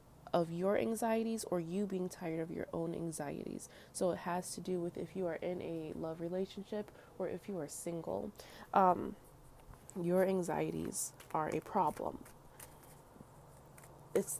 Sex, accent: female, American